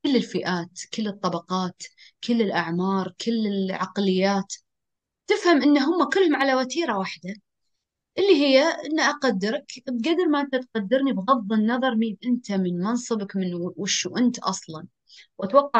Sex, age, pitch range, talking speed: female, 30-49, 185-250 Hz, 130 wpm